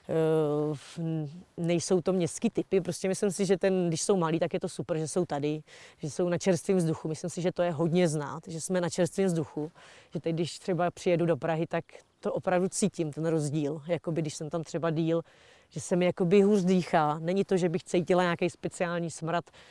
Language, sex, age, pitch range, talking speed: Czech, female, 30-49, 165-185 Hz, 215 wpm